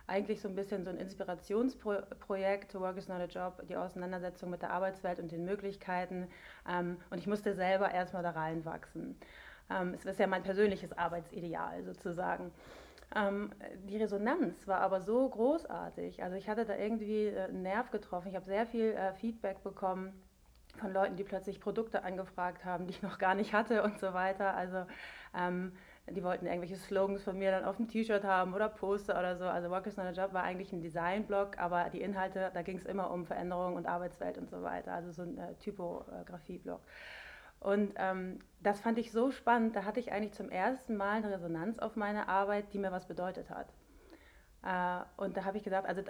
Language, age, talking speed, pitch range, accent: German, 30-49, 190 wpm, 180-205 Hz, German